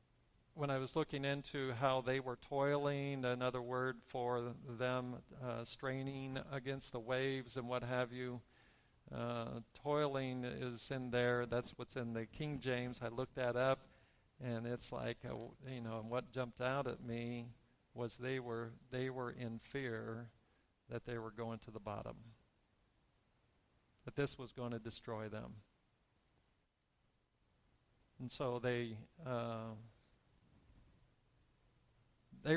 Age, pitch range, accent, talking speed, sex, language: 50-69, 115-130 Hz, American, 135 wpm, male, English